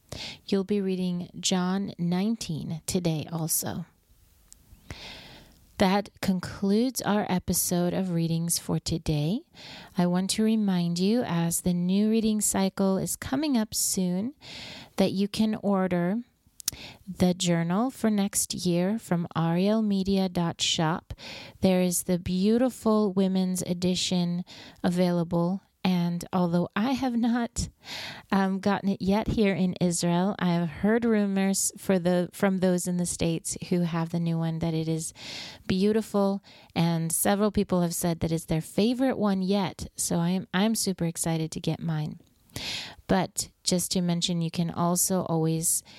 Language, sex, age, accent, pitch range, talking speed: English, female, 30-49, American, 165-195 Hz, 140 wpm